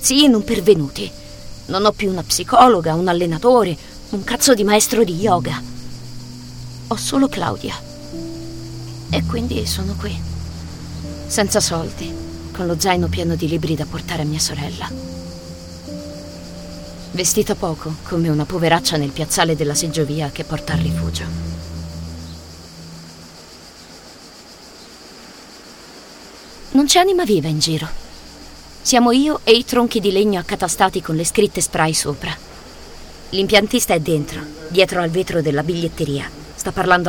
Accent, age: native, 30-49